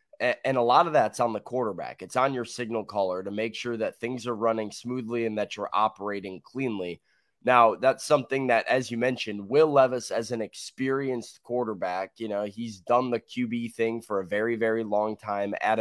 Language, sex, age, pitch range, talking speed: English, male, 20-39, 110-140 Hz, 200 wpm